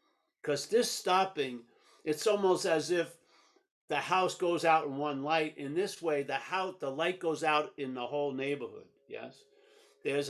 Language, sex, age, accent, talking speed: English, male, 50-69, American, 170 wpm